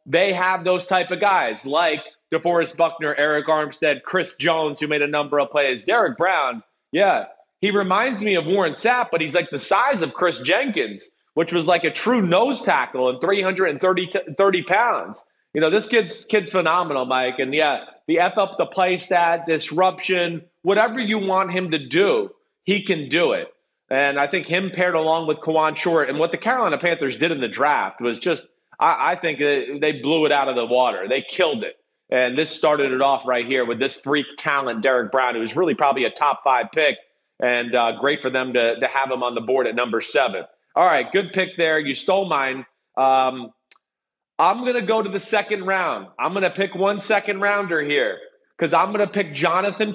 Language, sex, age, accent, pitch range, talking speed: English, male, 30-49, American, 150-195 Hz, 210 wpm